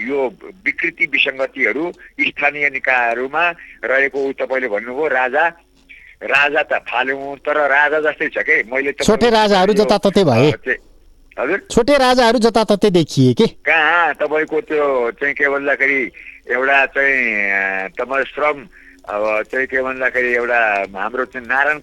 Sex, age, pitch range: male, 60-79, 115-140 Hz